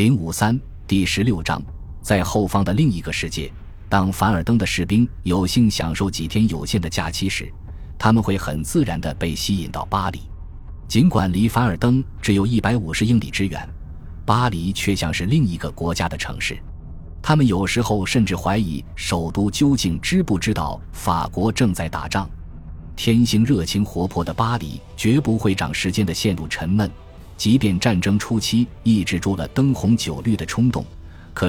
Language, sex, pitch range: Chinese, male, 85-110 Hz